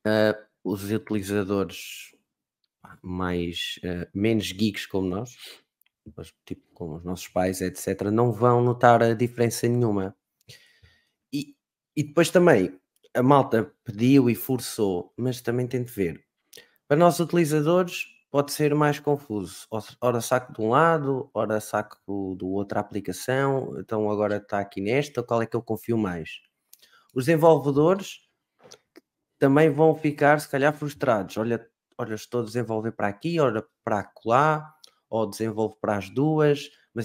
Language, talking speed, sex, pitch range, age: Portuguese, 145 wpm, male, 105-140 Hz, 20-39